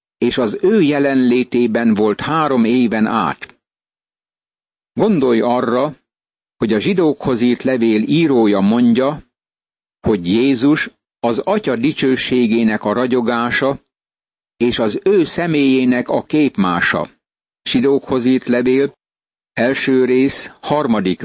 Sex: male